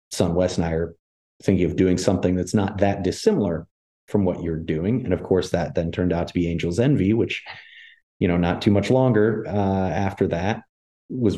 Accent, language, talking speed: American, English, 205 wpm